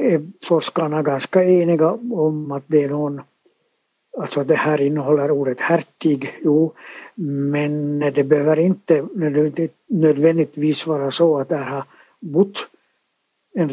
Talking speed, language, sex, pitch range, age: 140 wpm, Swedish, male, 145-180 Hz, 60-79